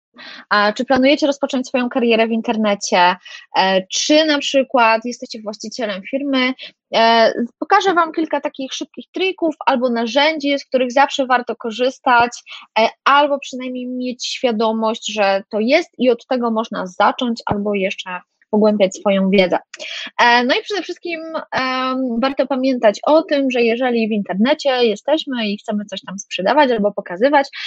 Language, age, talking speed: Polish, 20-39, 135 wpm